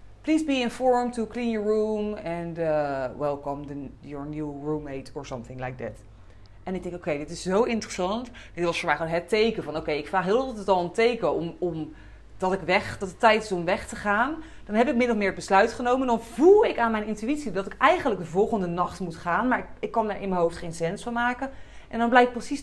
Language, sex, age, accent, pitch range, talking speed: Dutch, female, 30-49, Dutch, 165-235 Hz, 250 wpm